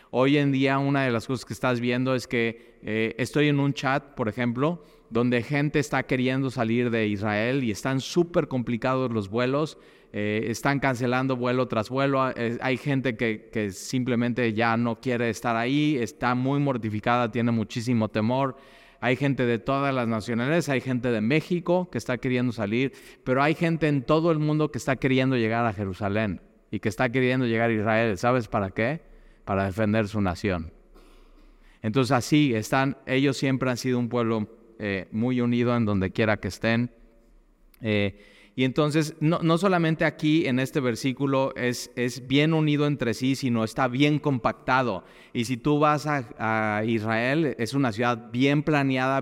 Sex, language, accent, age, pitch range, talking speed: male, Spanish, Mexican, 30-49, 115-140 Hz, 175 wpm